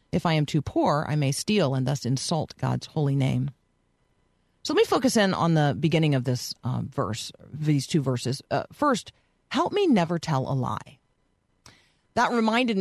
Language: English